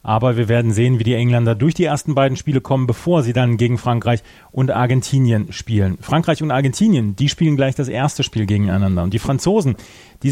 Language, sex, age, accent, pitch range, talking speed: German, male, 30-49, German, 120-150 Hz, 205 wpm